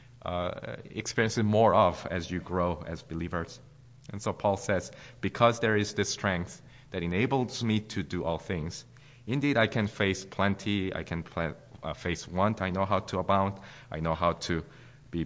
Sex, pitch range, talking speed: male, 85-110 Hz, 175 wpm